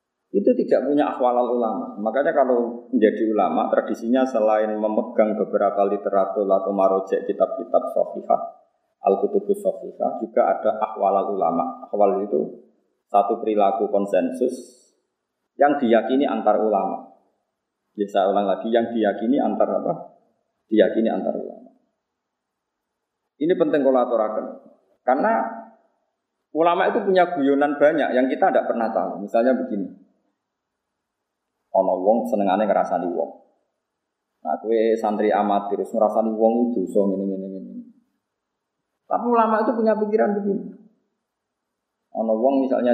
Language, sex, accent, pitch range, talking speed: Indonesian, male, native, 105-145 Hz, 120 wpm